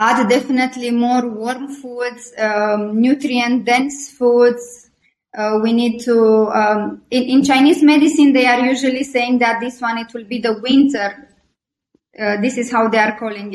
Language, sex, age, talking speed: English, female, 20-39, 165 wpm